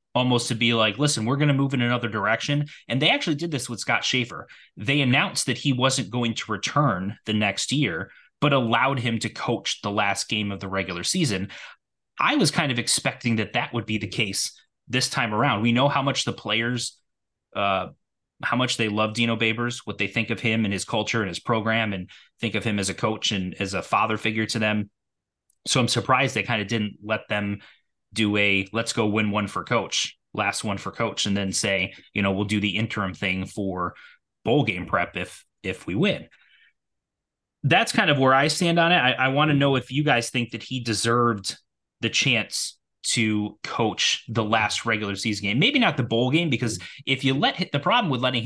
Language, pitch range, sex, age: English, 105-130 Hz, male, 20-39